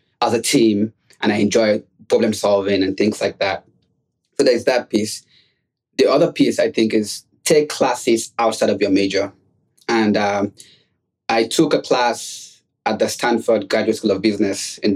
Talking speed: 170 wpm